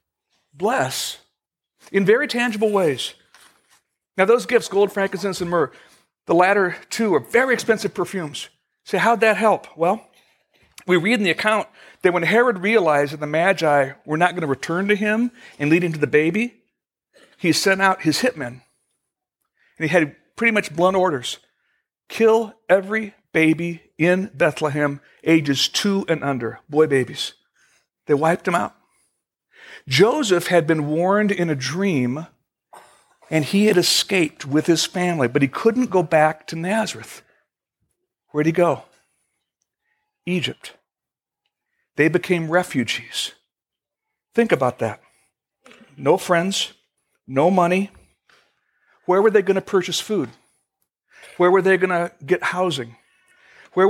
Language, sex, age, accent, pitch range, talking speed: English, male, 60-79, American, 160-205 Hz, 140 wpm